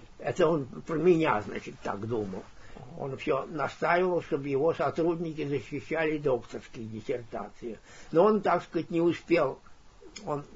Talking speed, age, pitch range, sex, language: 130 wpm, 60-79, 135-185 Hz, male, Russian